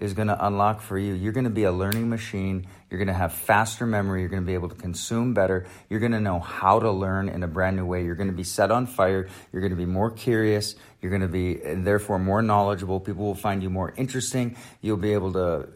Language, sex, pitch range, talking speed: English, male, 95-115 Hz, 265 wpm